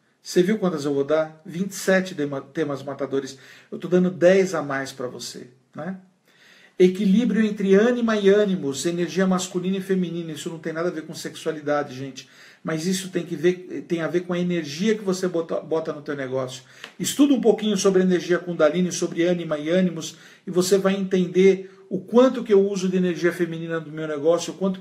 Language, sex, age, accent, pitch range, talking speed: Portuguese, male, 50-69, Brazilian, 160-185 Hz, 190 wpm